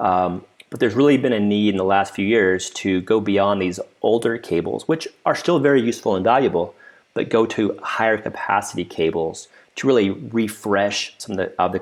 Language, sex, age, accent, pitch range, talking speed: English, male, 30-49, American, 95-115 Hz, 200 wpm